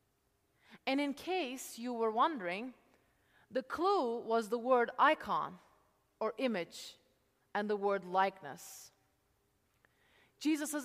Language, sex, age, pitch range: English, female, 30-49, 200-280 Hz